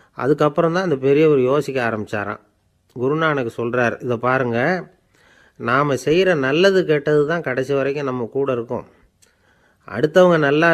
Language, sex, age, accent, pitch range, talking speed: Tamil, male, 30-49, native, 120-160 Hz, 125 wpm